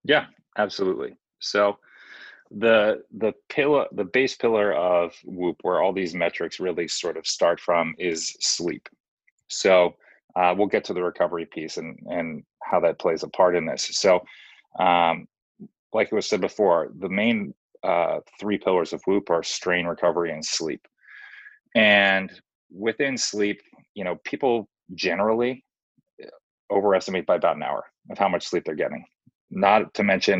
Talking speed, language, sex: 155 wpm, English, male